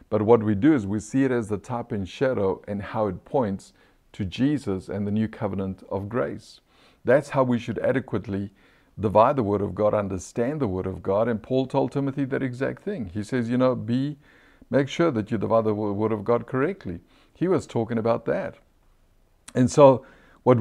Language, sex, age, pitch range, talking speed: English, male, 60-79, 105-130 Hz, 205 wpm